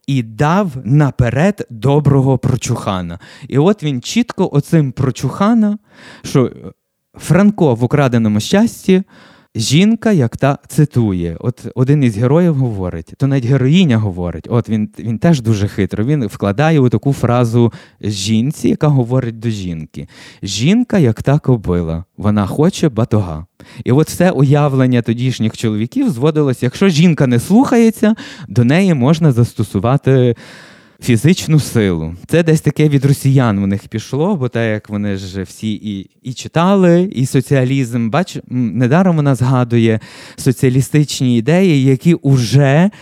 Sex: male